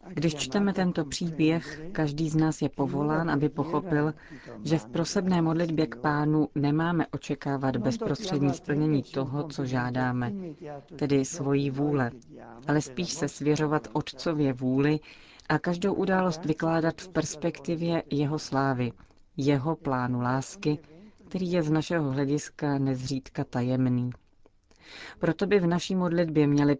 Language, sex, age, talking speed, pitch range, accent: Czech, female, 30-49, 130 wpm, 135-155 Hz, native